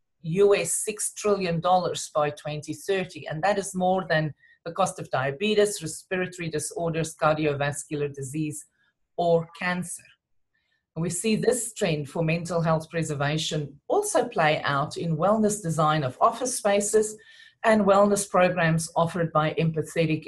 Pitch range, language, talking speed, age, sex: 150-190 Hz, English, 125 wpm, 40-59, female